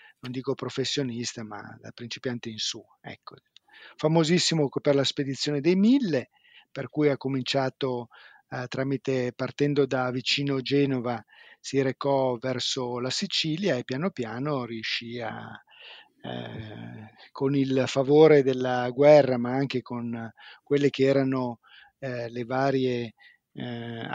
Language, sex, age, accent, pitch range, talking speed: Italian, male, 40-59, native, 120-145 Hz, 125 wpm